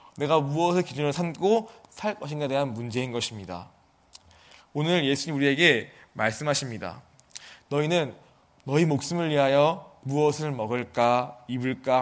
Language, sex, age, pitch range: Korean, male, 20-39, 120-170 Hz